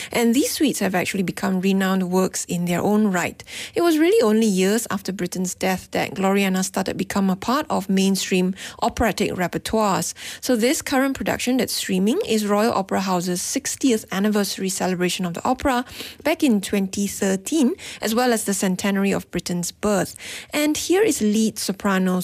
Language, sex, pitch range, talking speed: English, female, 150-205 Hz, 170 wpm